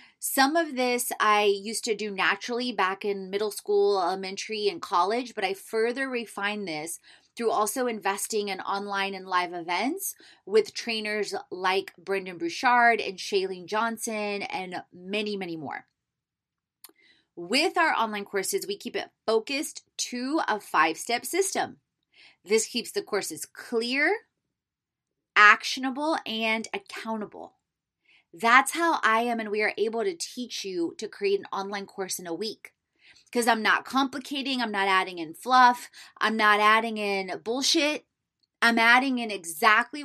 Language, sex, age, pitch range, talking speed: English, female, 20-39, 200-270 Hz, 145 wpm